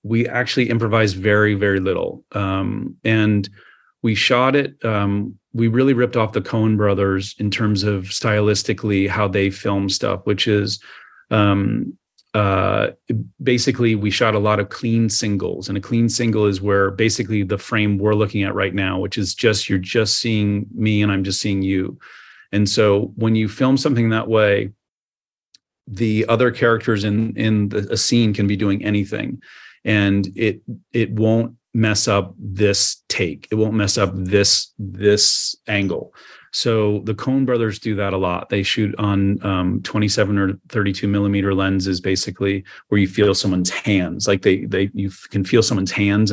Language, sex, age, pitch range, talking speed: English, male, 30-49, 100-110 Hz, 170 wpm